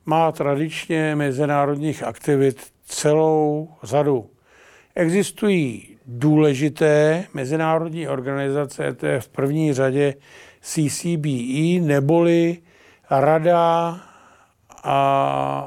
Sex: male